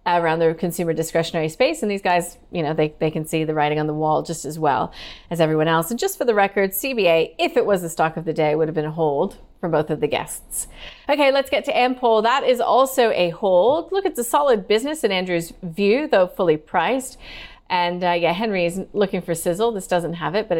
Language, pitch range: English, 165-230 Hz